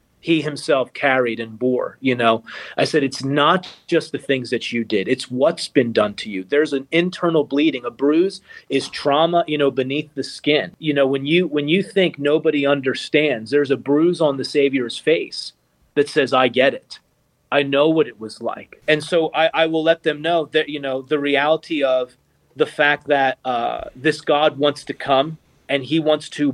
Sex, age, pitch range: male, 30-49, 135-160 Hz